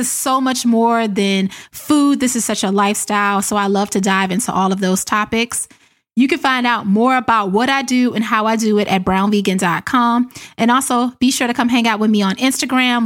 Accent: American